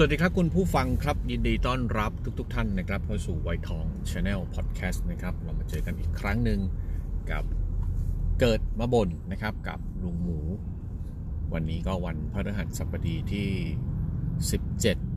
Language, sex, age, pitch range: Thai, male, 30-49, 85-100 Hz